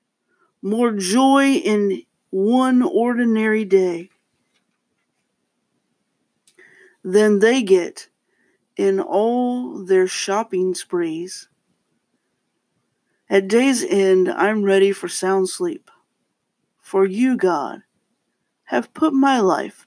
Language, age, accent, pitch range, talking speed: English, 50-69, American, 180-240 Hz, 90 wpm